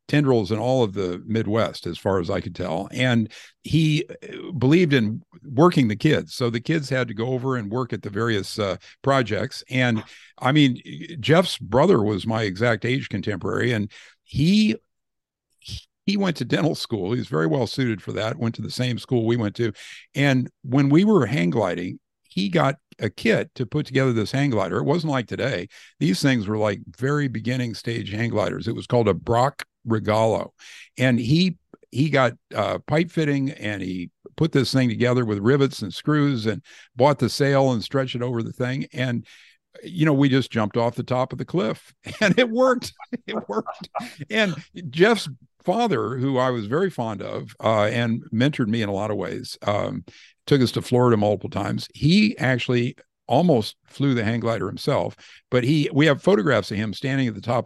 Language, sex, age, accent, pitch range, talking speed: English, male, 50-69, American, 110-140 Hz, 195 wpm